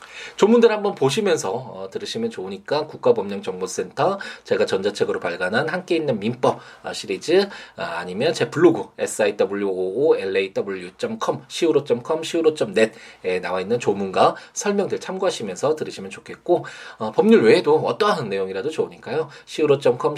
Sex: male